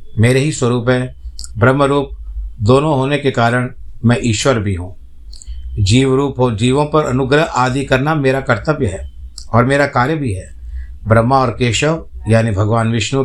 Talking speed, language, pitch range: 155 wpm, Hindi, 105-140 Hz